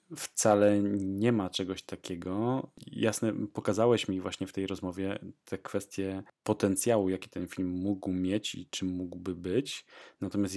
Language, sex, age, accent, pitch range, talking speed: Polish, male, 20-39, native, 95-105 Hz, 140 wpm